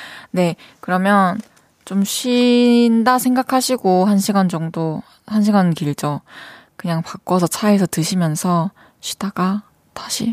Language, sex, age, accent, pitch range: Korean, female, 20-39, native, 195-255 Hz